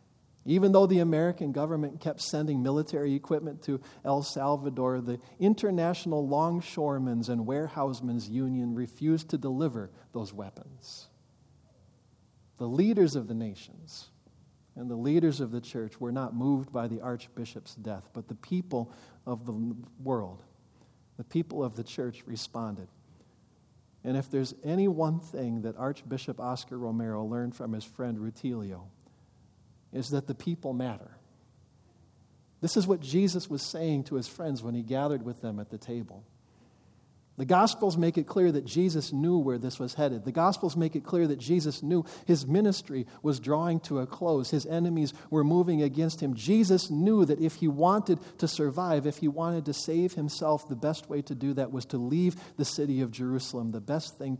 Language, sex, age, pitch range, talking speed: English, male, 40-59, 125-160 Hz, 170 wpm